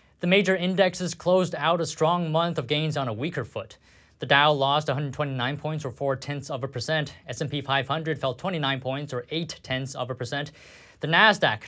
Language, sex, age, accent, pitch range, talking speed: English, male, 20-39, American, 125-165 Hz, 195 wpm